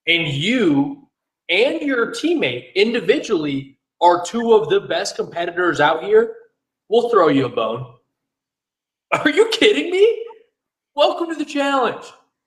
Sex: male